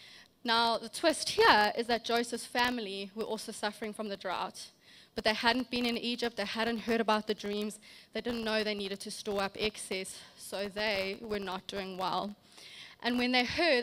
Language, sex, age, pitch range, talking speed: English, female, 20-39, 205-240 Hz, 195 wpm